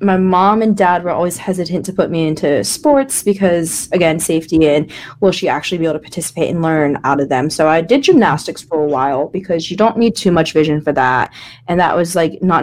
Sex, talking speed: female, 235 wpm